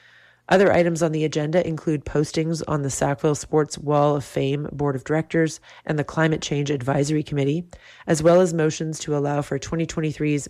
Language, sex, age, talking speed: English, female, 40-59, 175 wpm